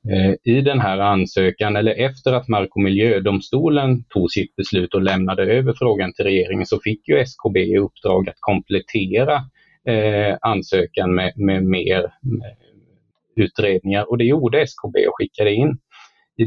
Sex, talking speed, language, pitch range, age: male, 145 wpm, Swedish, 100-125 Hz, 30-49